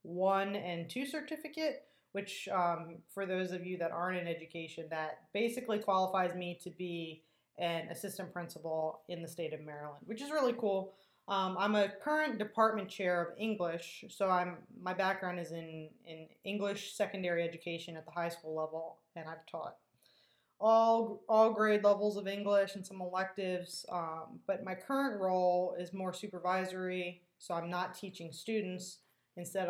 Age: 20-39